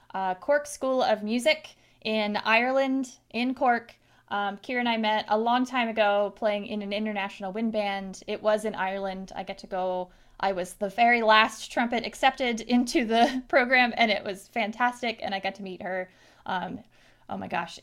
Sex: female